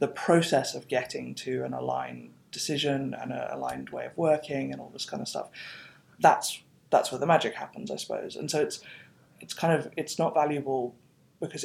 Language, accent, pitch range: English, British, 130-155 Hz